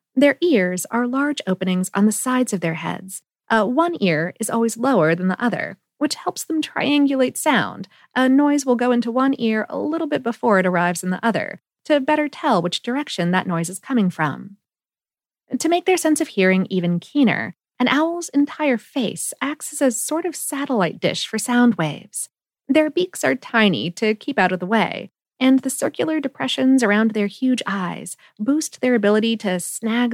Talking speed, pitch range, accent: 190 wpm, 185-265 Hz, American